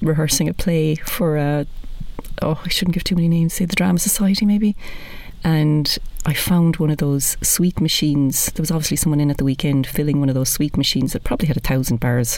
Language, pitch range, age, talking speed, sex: English, 140-180 Hz, 30-49, 225 wpm, female